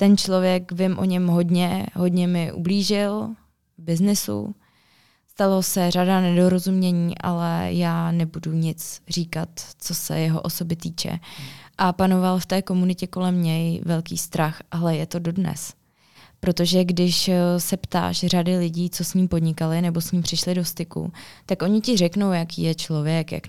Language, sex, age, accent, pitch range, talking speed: Czech, female, 20-39, native, 165-185 Hz, 160 wpm